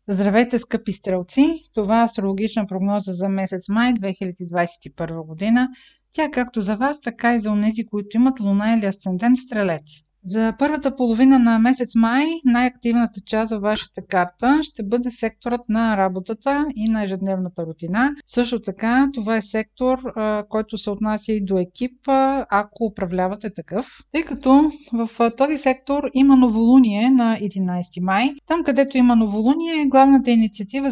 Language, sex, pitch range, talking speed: Bulgarian, female, 215-265 Hz, 150 wpm